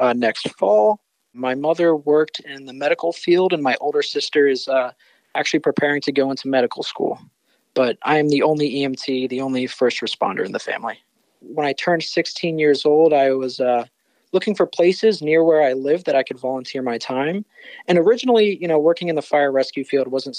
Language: English